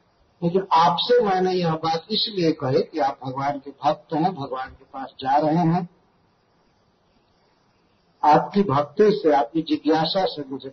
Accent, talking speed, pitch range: native, 145 wpm, 150-200 Hz